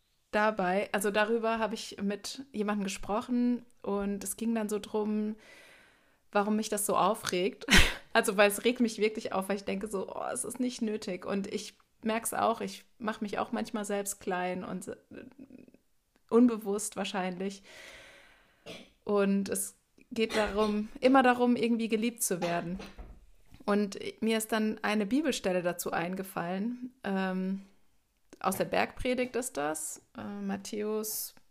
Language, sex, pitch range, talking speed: German, female, 195-230 Hz, 145 wpm